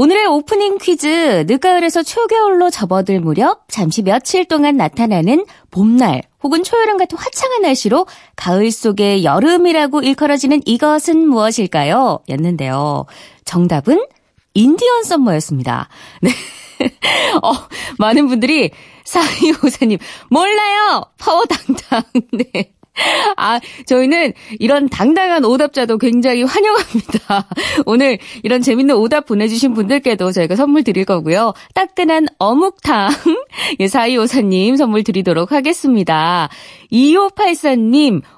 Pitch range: 205-325 Hz